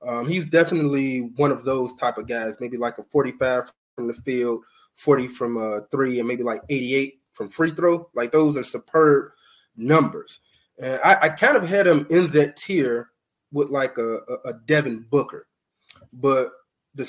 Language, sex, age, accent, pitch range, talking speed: English, male, 20-39, American, 125-150 Hz, 175 wpm